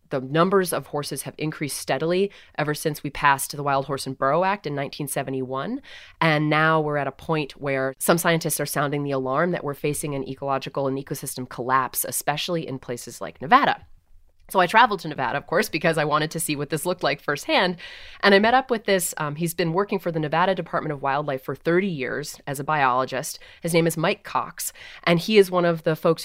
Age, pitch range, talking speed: 30-49, 135-160 Hz, 220 wpm